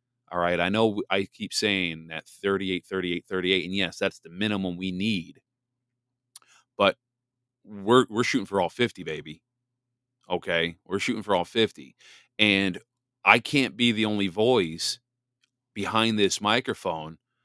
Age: 30-49